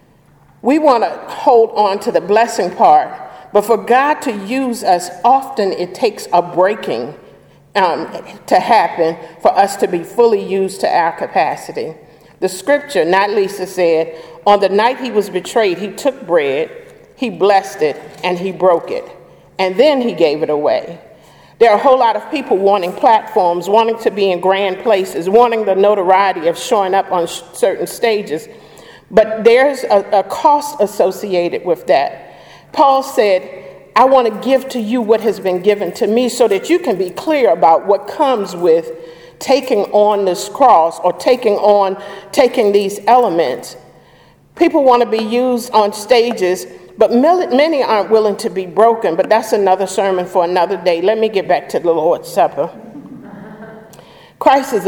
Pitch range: 185-250 Hz